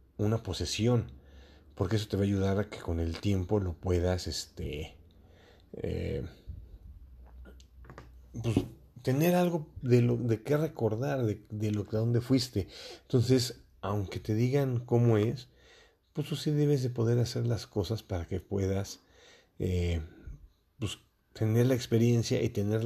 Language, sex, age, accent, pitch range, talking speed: English, male, 40-59, Mexican, 90-120 Hz, 145 wpm